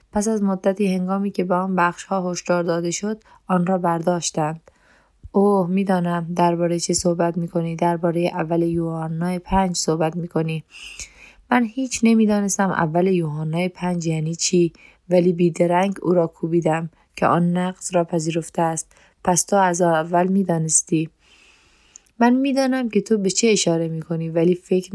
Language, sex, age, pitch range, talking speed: Persian, female, 20-39, 170-190 Hz, 155 wpm